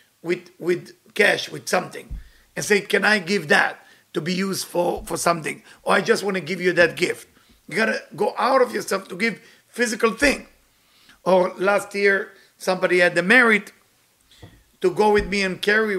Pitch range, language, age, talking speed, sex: 180-225 Hz, English, 50-69, 185 wpm, male